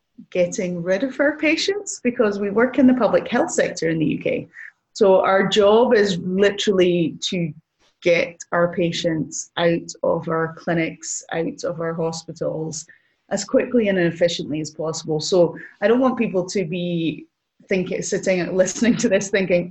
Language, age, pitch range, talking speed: English, 30-49, 165-200 Hz, 160 wpm